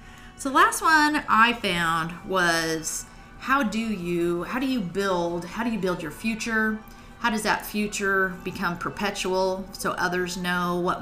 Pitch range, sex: 175-220 Hz, female